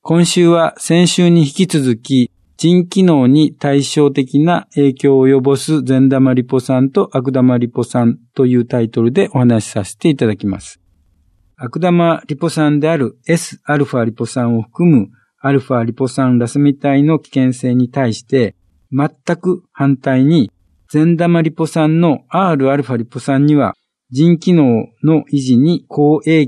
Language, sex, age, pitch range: Japanese, male, 50-69, 125-155 Hz